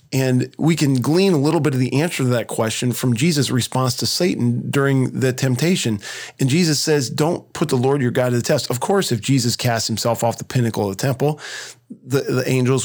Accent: American